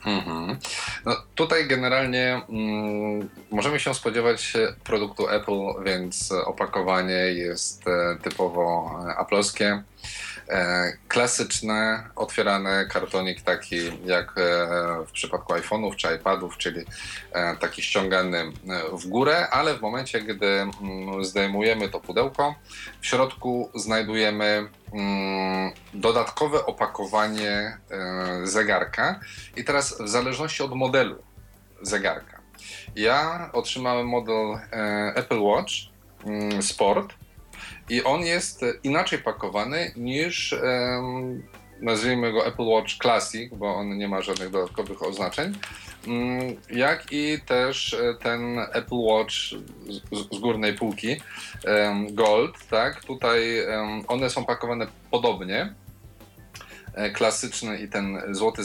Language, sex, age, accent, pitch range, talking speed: Polish, male, 20-39, native, 100-120 Hz, 95 wpm